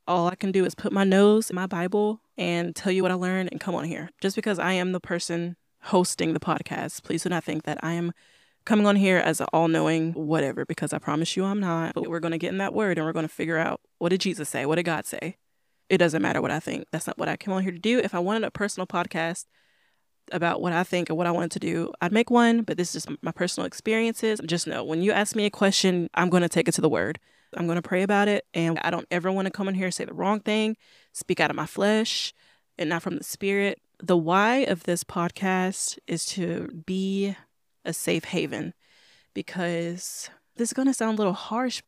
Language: English